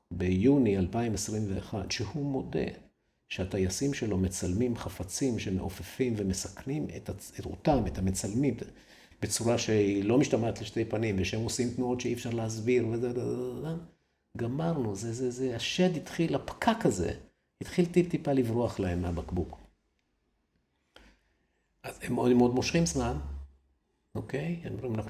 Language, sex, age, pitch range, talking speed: Hebrew, male, 50-69, 95-125 Hz, 115 wpm